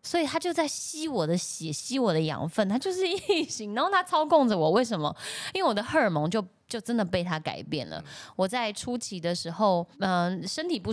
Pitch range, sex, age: 165-250 Hz, female, 10-29